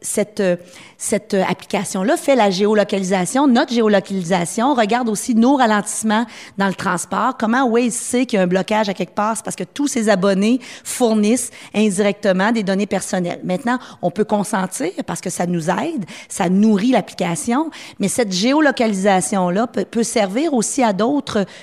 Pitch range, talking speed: 190-235 Hz, 160 wpm